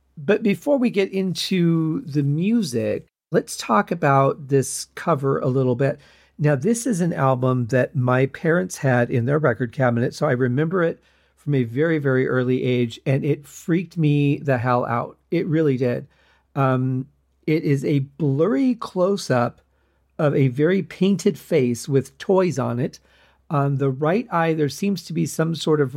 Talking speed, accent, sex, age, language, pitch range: 170 wpm, American, male, 40-59, English, 135-165 Hz